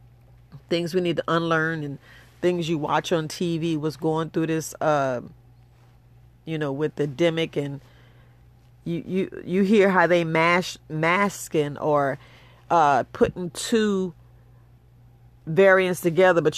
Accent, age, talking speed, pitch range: American, 30-49, 135 wpm, 125-180 Hz